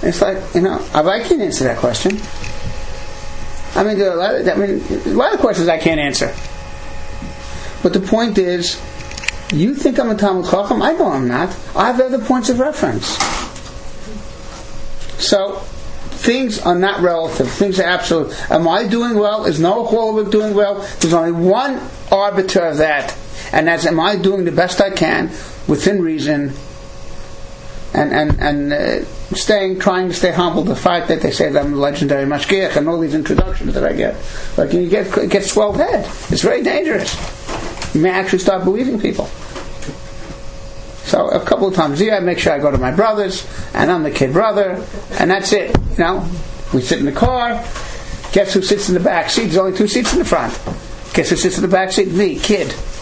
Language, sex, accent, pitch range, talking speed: English, male, American, 160-210 Hz, 190 wpm